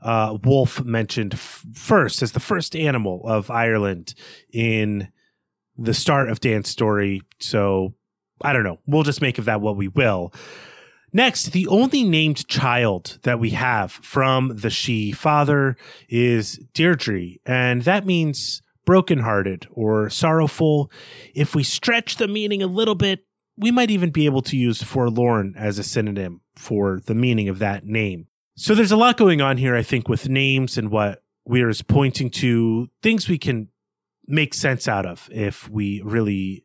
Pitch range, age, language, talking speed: 110-150 Hz, 30-49, English, 165 wpm